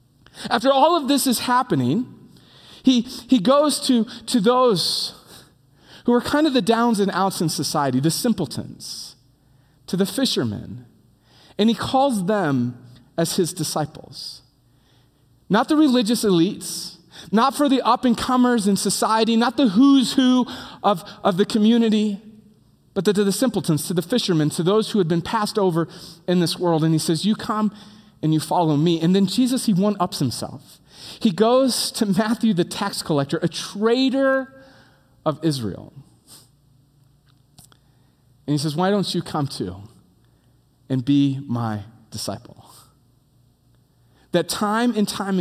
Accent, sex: American, male